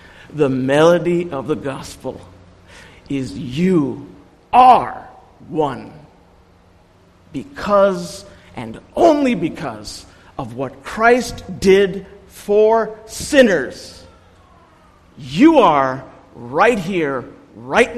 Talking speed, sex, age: 80 wpm, male, 50-69